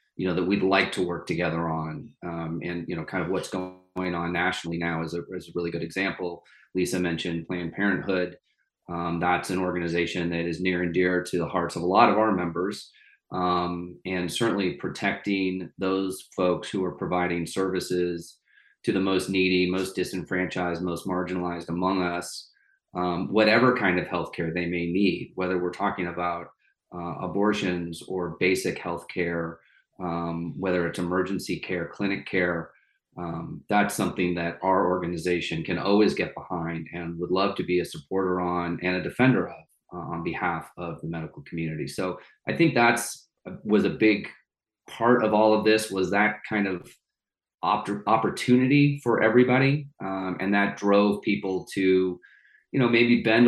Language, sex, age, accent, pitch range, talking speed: English, male, 30-49, American, 85-100 Hz, 175 wpm